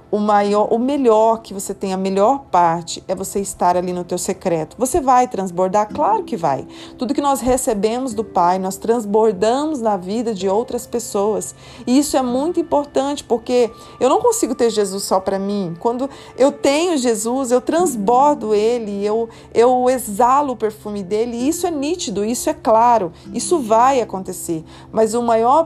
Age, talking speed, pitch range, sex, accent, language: 40-59, 180 wpm, 195-250 Hz, female, Brazilian, Portuguese